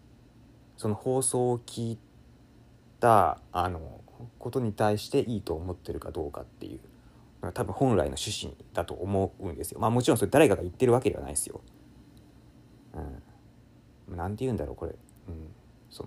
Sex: male